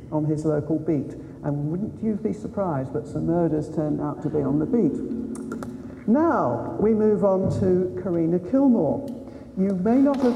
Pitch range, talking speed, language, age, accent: 155-225 Hz, 175 wpm, English, 60-79, British